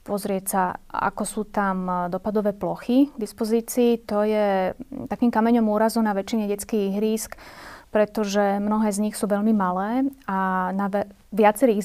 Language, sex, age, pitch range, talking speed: Slovak, female, 30-49, 190-215 Hz, 145 wpm